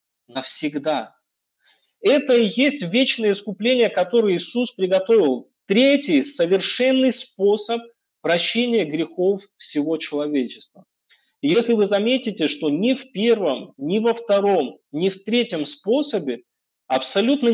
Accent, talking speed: native, 105 wpm